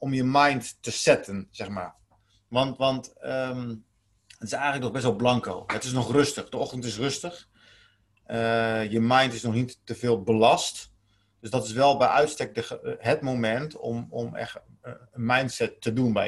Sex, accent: male, Dutch